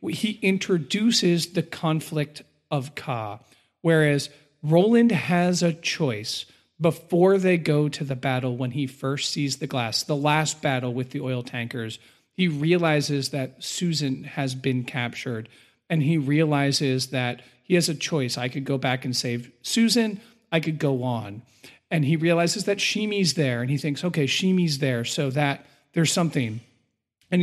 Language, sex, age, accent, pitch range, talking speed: English, male, 40-59, American, 125-165 Hz, 160 wpm